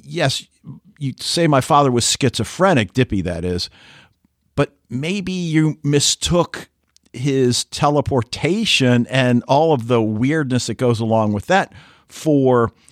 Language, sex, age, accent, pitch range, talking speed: English, male, 50-69, American, 105-145 Hz, 125 wpm